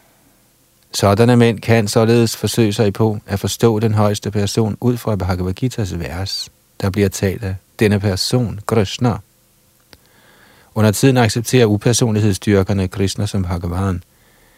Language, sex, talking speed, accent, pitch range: Danish, male, 130 wpm, native, 100-120 Hz